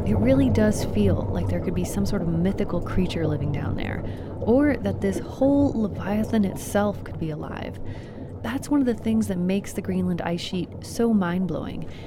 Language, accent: English, American